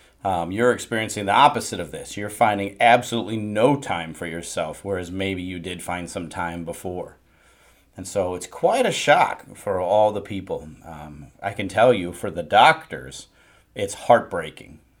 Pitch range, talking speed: 90-110 Hz, 170 wpm